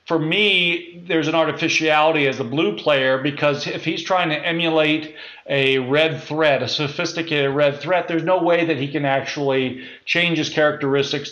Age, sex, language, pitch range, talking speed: 40-59, male, English, 140-165 Hz, 170 wpm